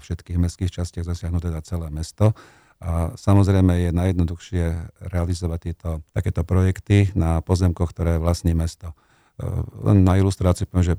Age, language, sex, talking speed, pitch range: 50-69, Slovak, male, 140 wpm, 85-95 Hz